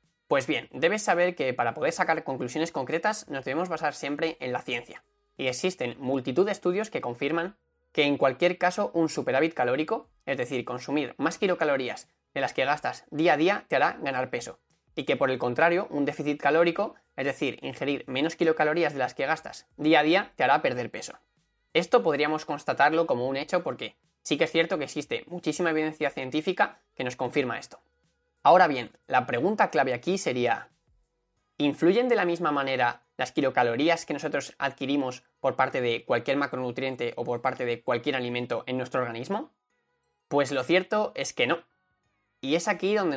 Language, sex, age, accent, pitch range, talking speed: Spanish, male, 20-39, Spanish, 130-170 Hz, 185 wpm